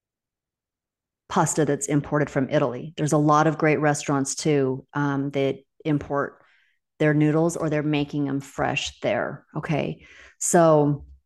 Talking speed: 135 wpm